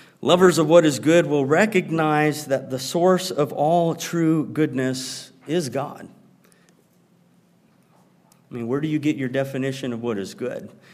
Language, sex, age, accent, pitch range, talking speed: English, male, 50-69, American, 125-175 Hz, 155 wpm